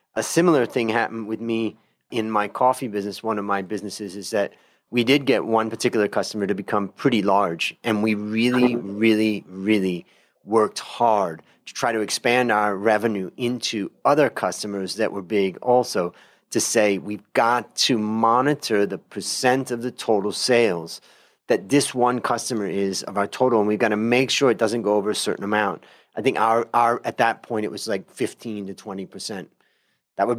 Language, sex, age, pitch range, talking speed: English, male, 30-49, 105-125 Hz, 180 wpm